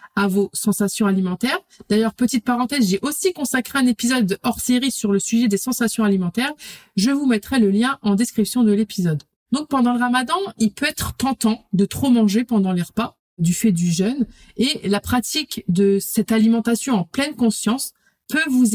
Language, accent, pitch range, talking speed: French, French, 205-255 Hz, 185 wpm